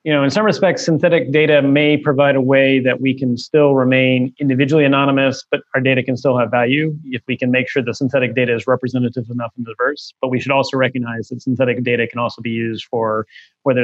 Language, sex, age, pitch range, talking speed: English, male, 30-49, 130-160 Hz, 225 wpm